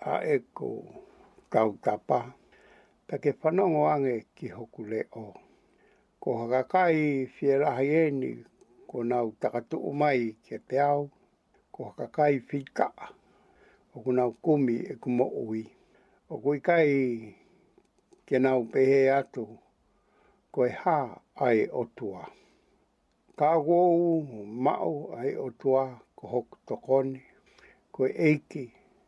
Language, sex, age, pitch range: English, male, 60-79, 120-145 Hz